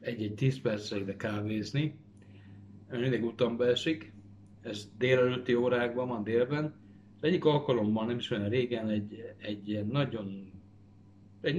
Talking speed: 125 wpm